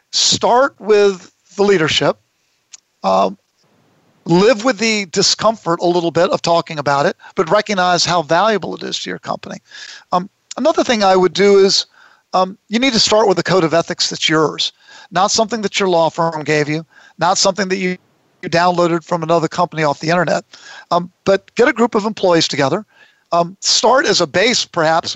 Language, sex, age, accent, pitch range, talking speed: English, male, 50-69, American, 175-220 Hz, 185 wpm